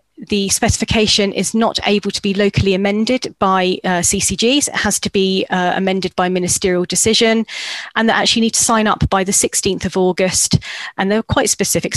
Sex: female